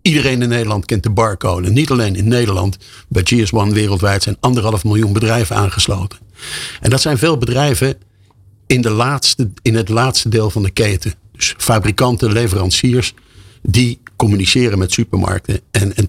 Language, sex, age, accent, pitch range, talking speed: Dutch, male, 50-69, Dutch, 100-120 Hz, 160 wpm